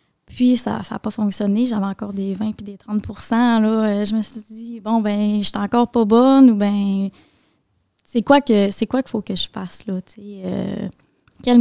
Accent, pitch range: Canadian, 210-250 Hz